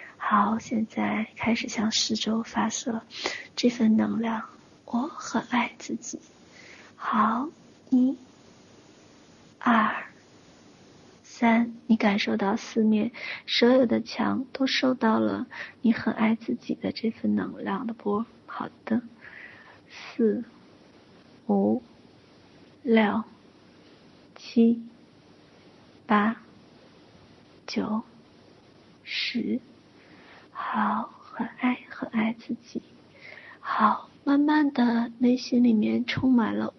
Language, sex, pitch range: Chinese, female, 215-245 Hz